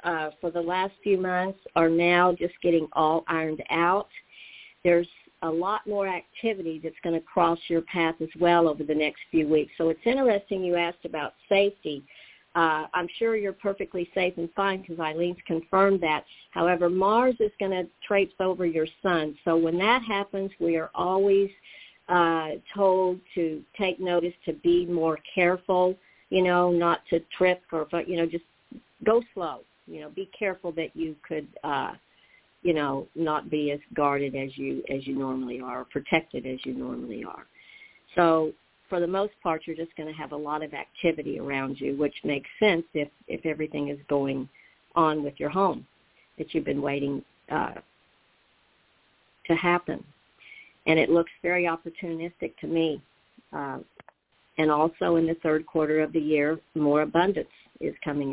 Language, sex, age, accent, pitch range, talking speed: English, female, 50-69, American, 155-185 Hz, 175 wpm